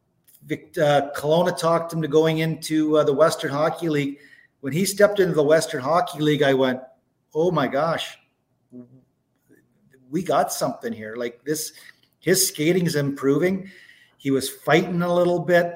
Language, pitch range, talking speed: English, 140-190 Hz, 155 wpm